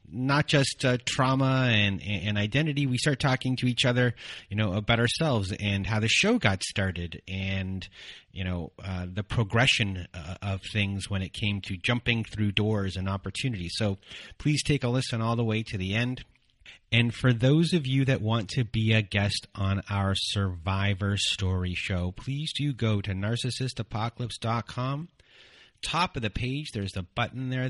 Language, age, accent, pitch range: English, 30-49, American, 95-130 Hz